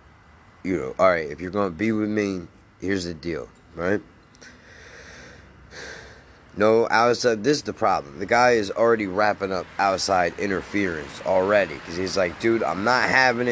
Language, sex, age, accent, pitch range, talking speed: English, male, 20-39, American, 95-115 Hz, 155 wpm